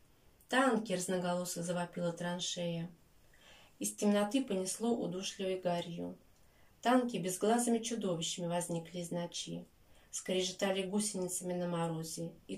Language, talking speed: Russian, 95 wpm